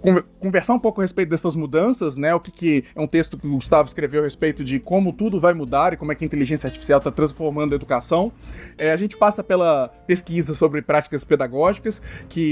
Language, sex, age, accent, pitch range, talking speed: Portuguese, male, 20-39, Brazilian, 145-180 Hz, 220 wpm